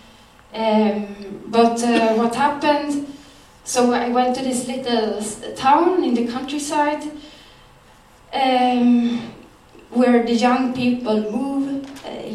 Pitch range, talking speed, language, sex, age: 205-245 Hz, 110 wpm, Swedish, female, 20-39